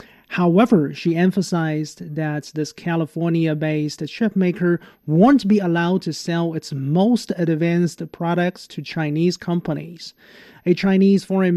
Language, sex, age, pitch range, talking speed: English, male, 30-49, 165-205 Hz, 115 wpm